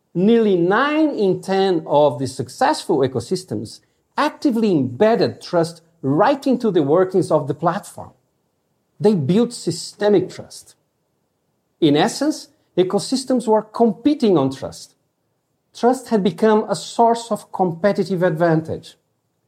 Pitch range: 145-215 Hz